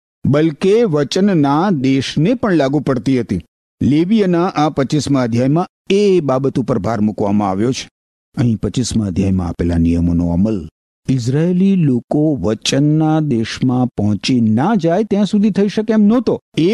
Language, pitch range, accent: Gujarati, 125-185 Hz, native